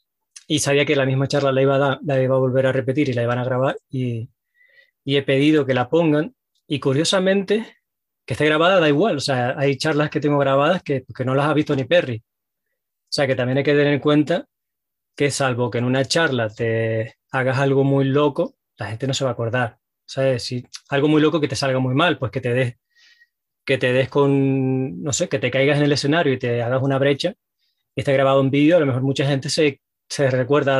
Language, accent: Spanish, Spanish